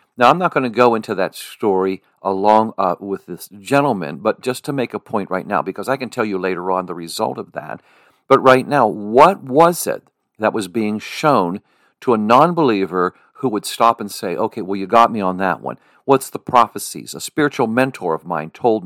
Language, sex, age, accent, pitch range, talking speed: English, male, 50-69, American, 95-135 Hz, 215 wpm